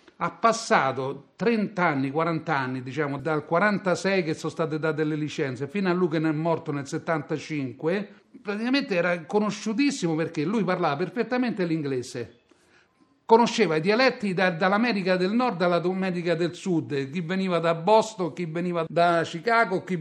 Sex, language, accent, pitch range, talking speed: male, Italian, native, 150-200 Hz, 150 wpm